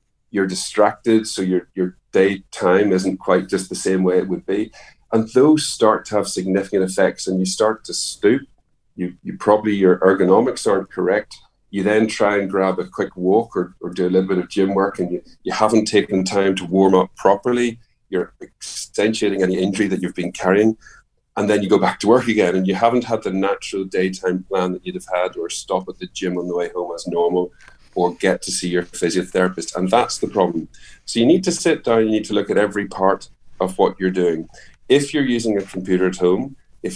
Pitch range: 90-105 Hz